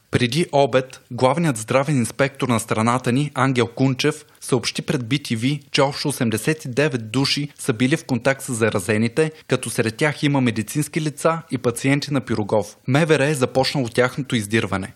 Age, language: 20-39, Bulgarian